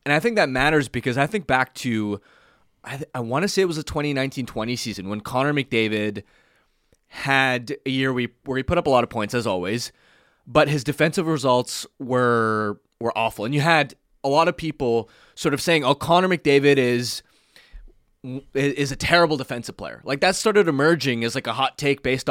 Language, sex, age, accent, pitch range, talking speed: English, male, 20-39, American, 125-160 Hz, 205 wpm